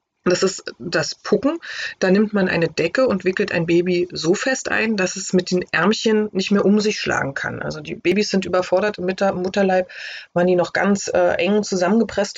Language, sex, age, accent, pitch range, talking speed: German, female, 30-49, German, 175-205 Hz, 200 wpm